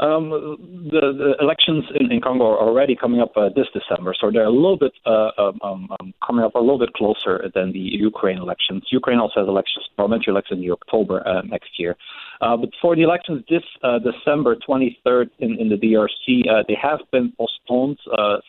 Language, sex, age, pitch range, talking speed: English, male, 30-49, 105-135 Hz, 200 wpm